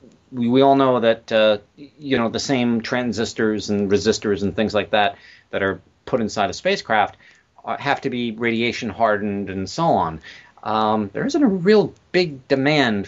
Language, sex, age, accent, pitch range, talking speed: English, male, 40-59, American, 100-115 Hz, 170 wpm